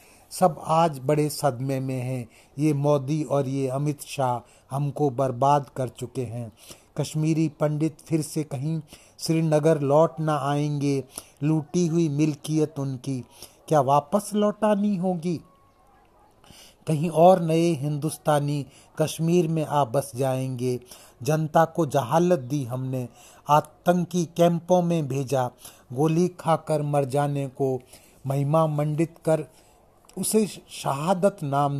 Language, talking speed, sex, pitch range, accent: Hindi, 115 wpm, male, 135-160 Hz, native